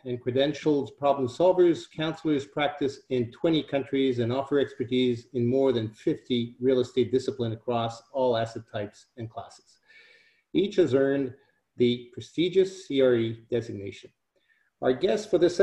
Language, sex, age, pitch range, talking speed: English, male, 40-59, 125-155 Hz, 140 wpm